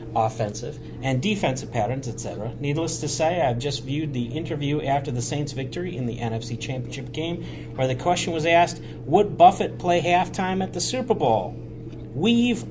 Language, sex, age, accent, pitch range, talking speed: English, male, 40-59, American, 120-155 Hz, 170 wpm